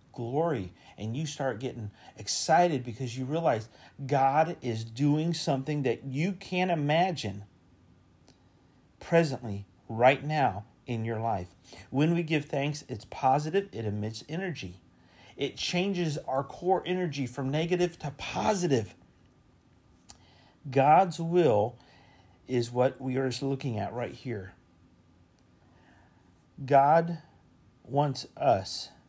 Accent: American